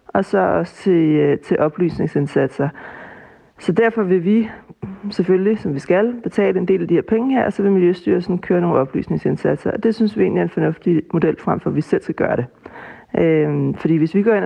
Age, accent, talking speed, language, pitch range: 30-49, native, 210 wpm, Danish, 165-205 Hz